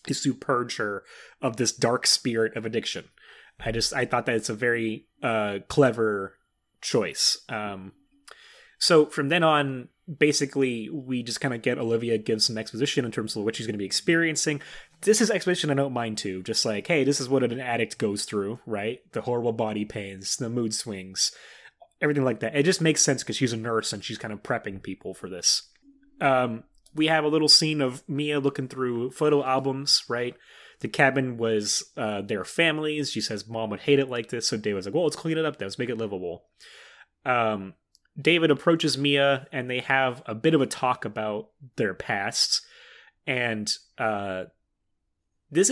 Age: 30-49